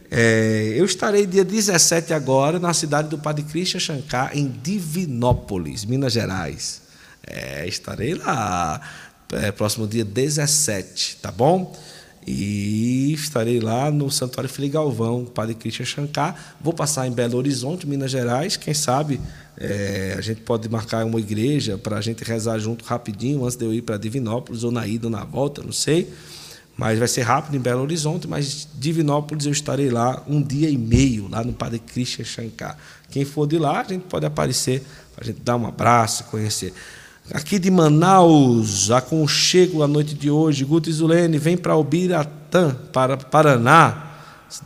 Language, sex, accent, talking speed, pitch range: Portuguese, male, Brazilian, 165 wpm, 115-150 Hz